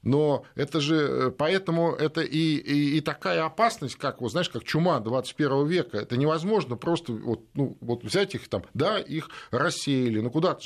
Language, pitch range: Russian, 115-155 Hz